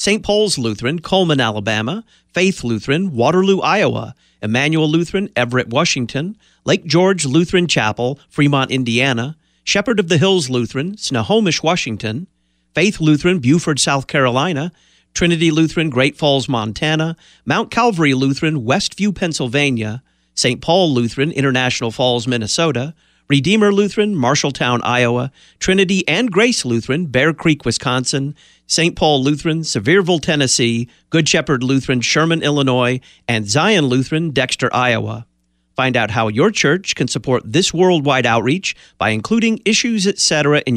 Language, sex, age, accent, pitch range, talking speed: English, male, 50-69, American, 120-170 Hz, 130 wpm